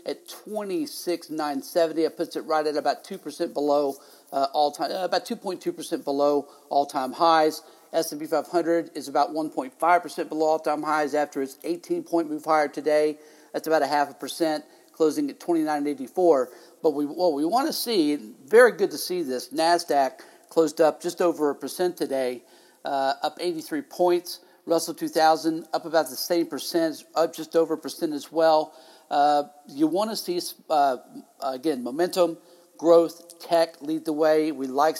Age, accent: 50-69, American